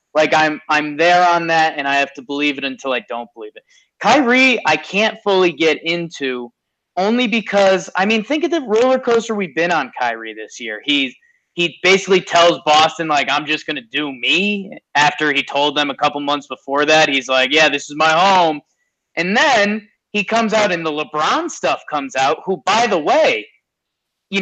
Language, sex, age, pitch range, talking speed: English, male, 30-49, 145-215 Hz, 200 wpm